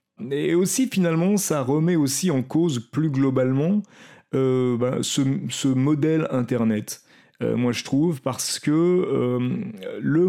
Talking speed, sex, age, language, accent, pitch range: 140 wpm, male, 30-49, French, French, 110-150 Hz